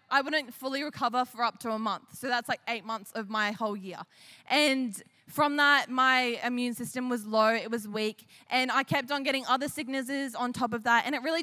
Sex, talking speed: female, 225 wpm